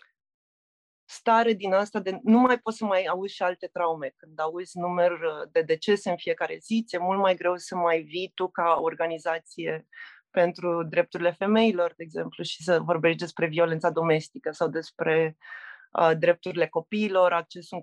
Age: 20-39